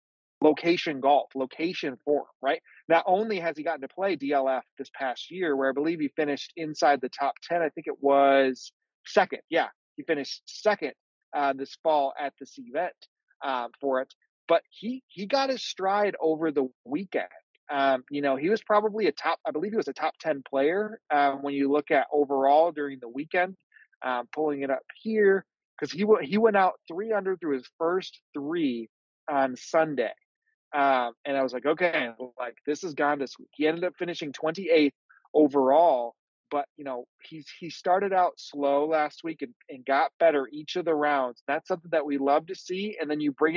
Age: 30-49